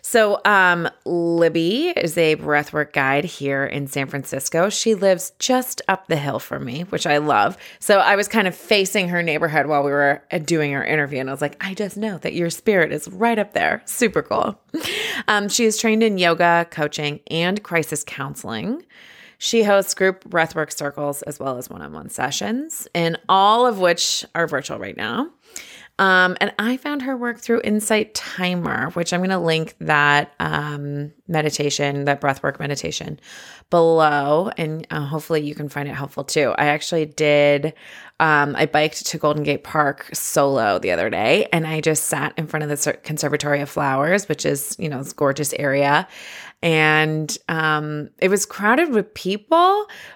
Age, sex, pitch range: 30-49, female, 145-195 Hz